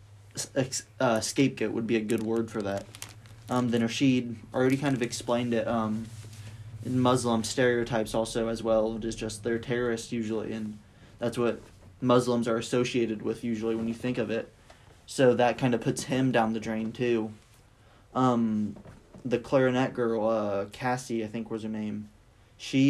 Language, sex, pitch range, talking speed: English, male, 110-125 Hz, 175 wpm